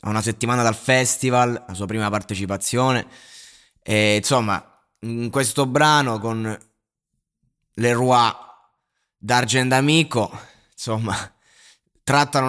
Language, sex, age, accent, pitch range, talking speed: Italian, male, 20-39, native, 110-145 Hz, 100 wpm